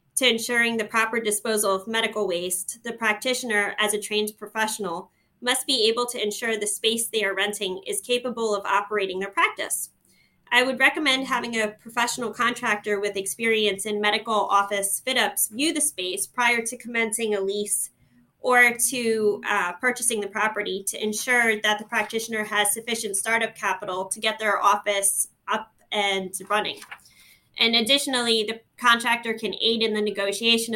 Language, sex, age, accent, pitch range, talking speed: English, female, 20-39, American, 205-235 Hz, 160 wpm